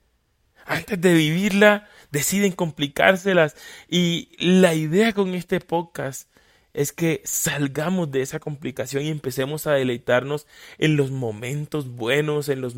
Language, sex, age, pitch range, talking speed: Spanish, male, 30-49, 135-175 Hz, 125 wpm